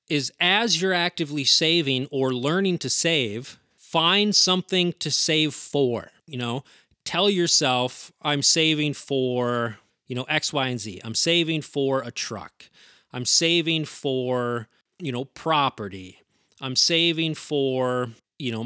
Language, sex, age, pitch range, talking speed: English, male, 30-49, 120-160 Hz, 140 wpm